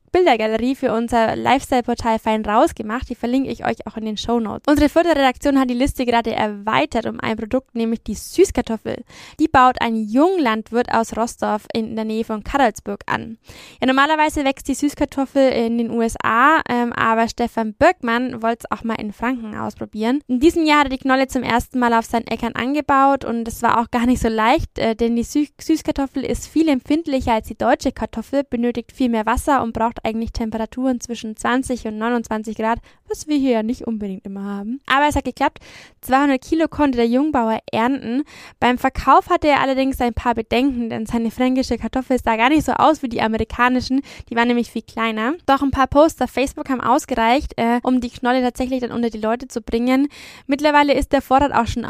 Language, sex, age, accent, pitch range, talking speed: German, female, 10-29, German, 230-275 Hz, 200 wpm